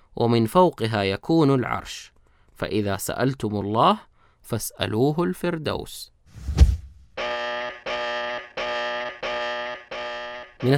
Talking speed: 55 wpm